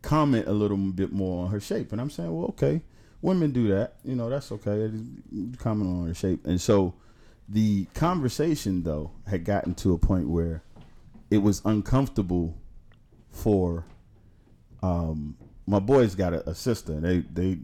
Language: English